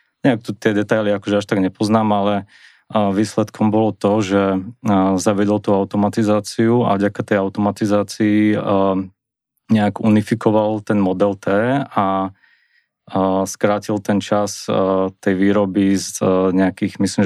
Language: Slovak